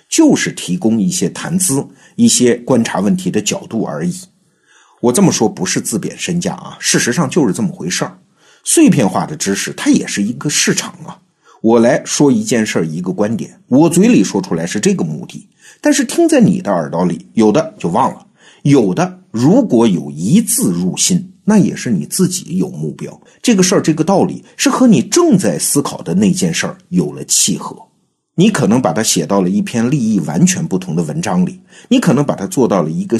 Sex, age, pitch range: male, 50-69, 160-205 Hz